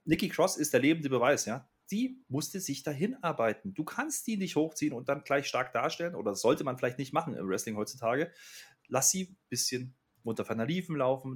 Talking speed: 205 wpm